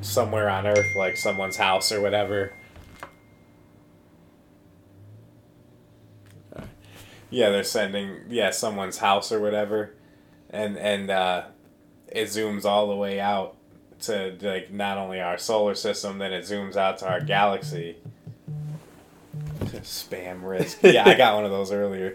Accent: American